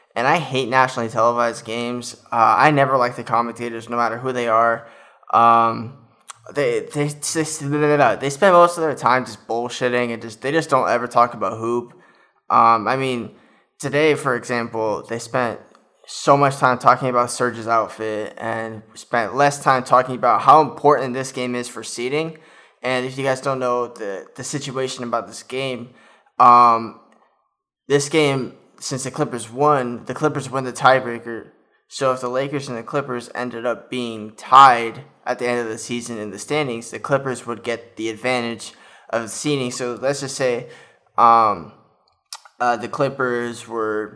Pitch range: 115-135 Hz